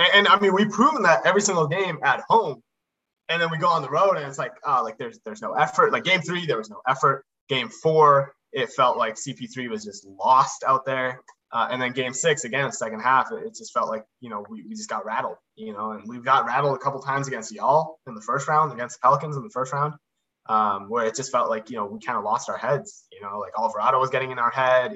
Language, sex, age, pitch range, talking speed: English, male, 20-39, 130-200 Hz, 265 wpm